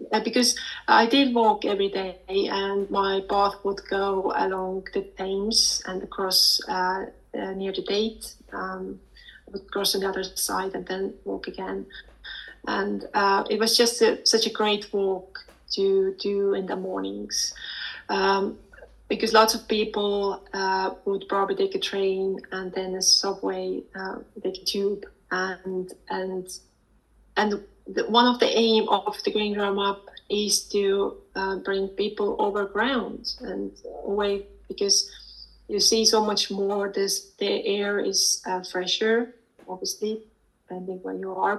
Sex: female